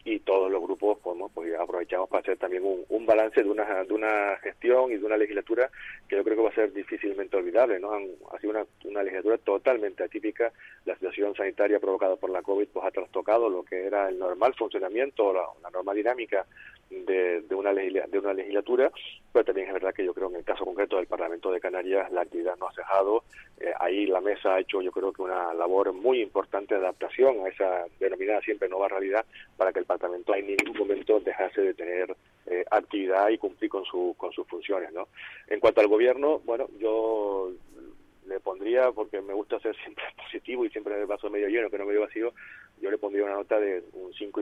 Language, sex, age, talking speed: Spanish, male, 40-59, 215 wpm